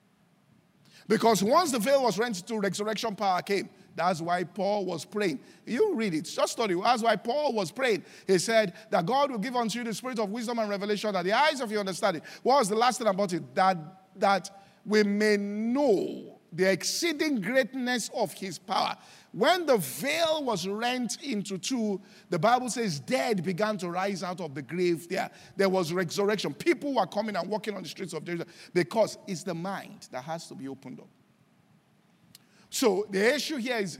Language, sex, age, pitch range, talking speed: English, male, 50-69, 190-245 Hz, 195 wpm